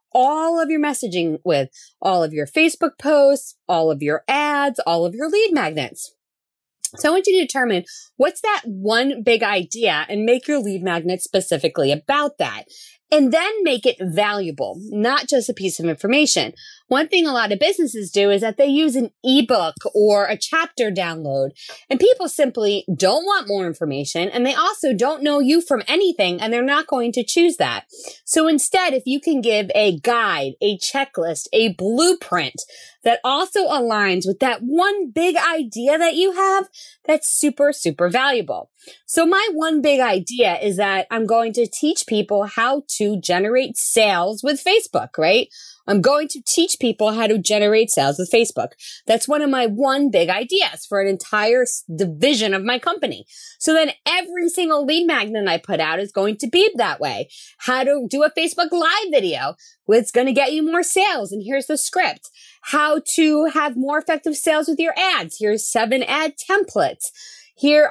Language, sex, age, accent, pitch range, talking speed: English, female, 20-39, American, 210-320 Hz, 180 wpm